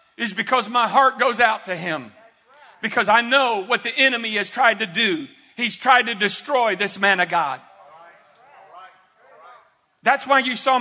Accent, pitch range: American, 255-325 Hz